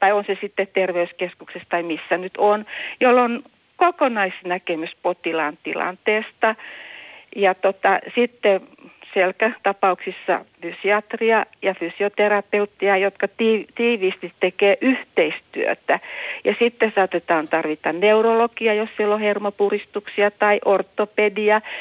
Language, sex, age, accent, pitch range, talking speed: Finnish, female, 60-79, native, 180-220 Hz, 100 wpm